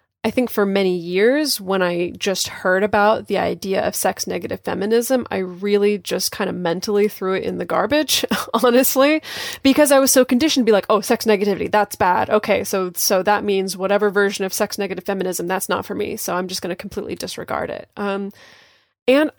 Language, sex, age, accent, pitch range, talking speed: English, female, 20-39, American, 195-250 Hz, 205 wpm